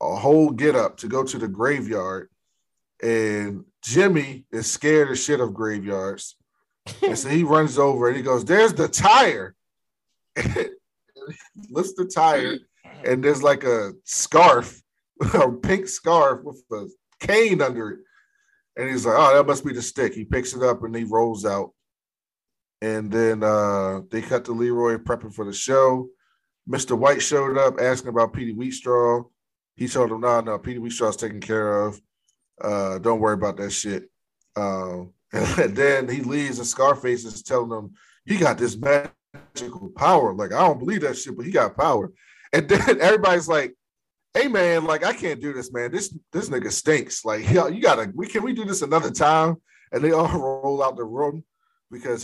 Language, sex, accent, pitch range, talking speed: English, male, American, 110-150 Hz, 180 wpm